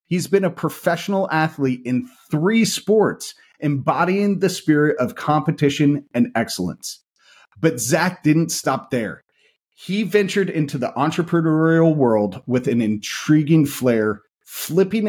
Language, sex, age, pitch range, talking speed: English, male, 30-49, 125-165 Hz, 125 wpm